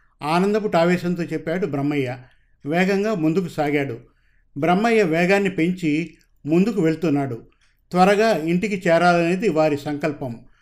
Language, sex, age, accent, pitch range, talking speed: Telugu, male, 50-69, native, 150-185 Hz, 95 wpm